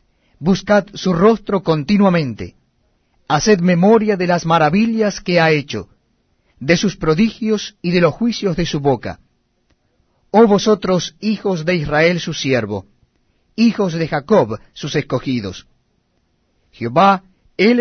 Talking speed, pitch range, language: 120 wpm, 130-195 Hz, Spanish